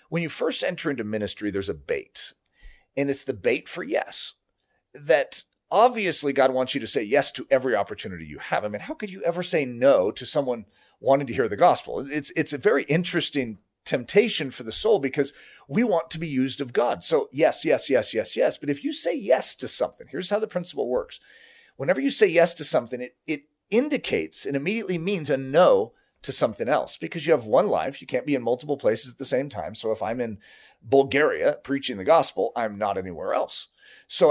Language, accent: English, American